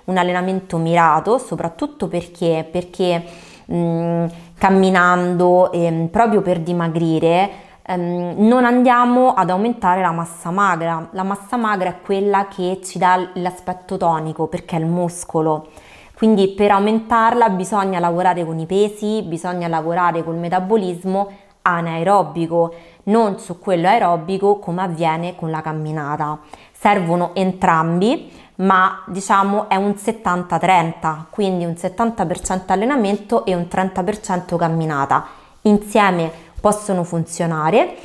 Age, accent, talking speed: 20-39, native, 115 wpm